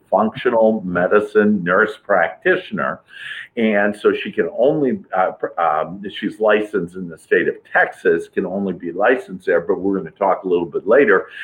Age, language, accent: 50-69, English, American